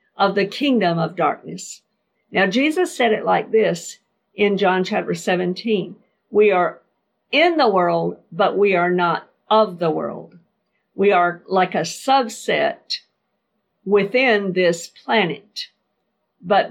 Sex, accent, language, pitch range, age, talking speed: female, American, English, 180-235 Hz, 50-69, 130 wpm